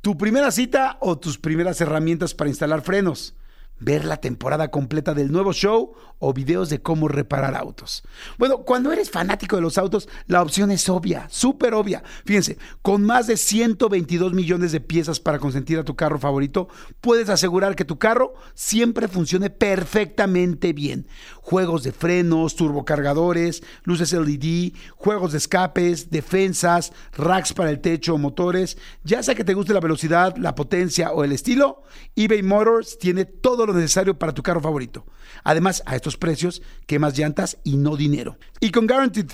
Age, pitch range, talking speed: 50-69, 155-205 Hz, 165 wpm